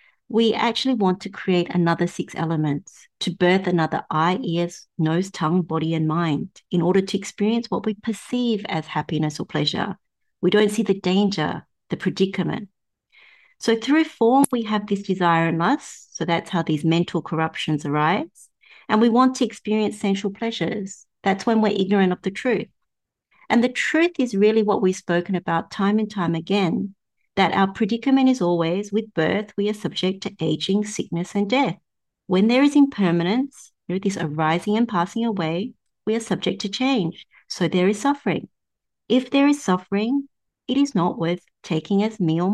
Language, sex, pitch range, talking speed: English, female, 175-225 Hz, 175 wpm